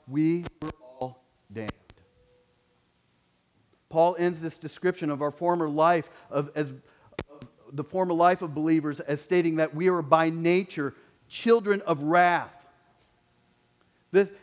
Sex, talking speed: male, 130 wpm